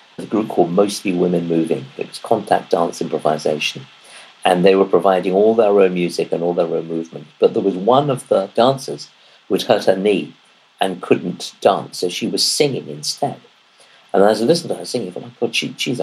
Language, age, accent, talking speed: English, 50-69, British, 215 wpm